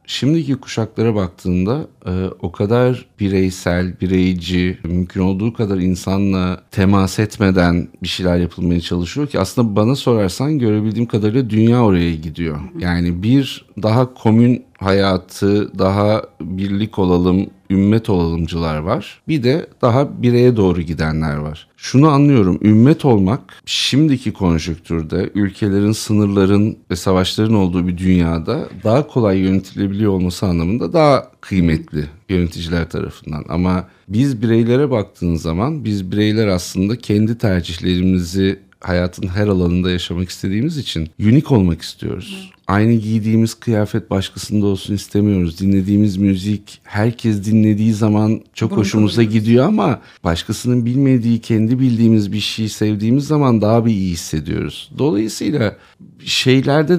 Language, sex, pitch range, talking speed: Turkish, male, 90-115 Hz, 120 wpm